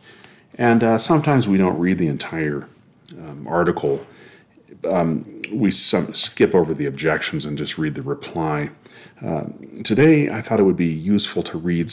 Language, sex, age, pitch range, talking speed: English, male, 40-59, 75-110 Hz, 155 wpm